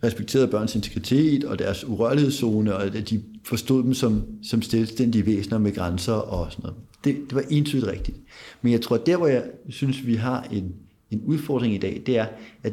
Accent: native